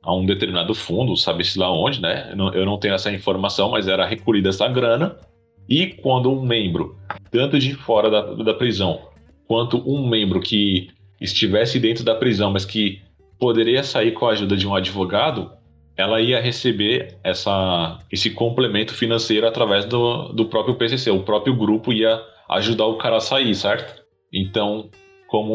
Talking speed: 160 wpm